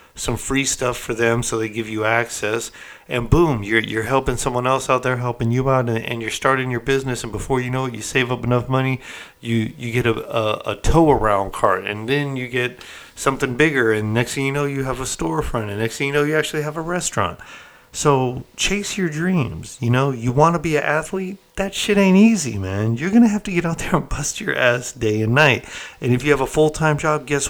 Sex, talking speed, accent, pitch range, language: male, 240 wpm, American, 110-135 Hz, English